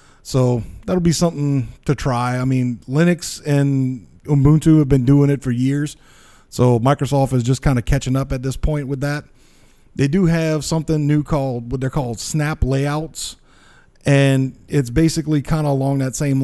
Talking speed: 180 wpm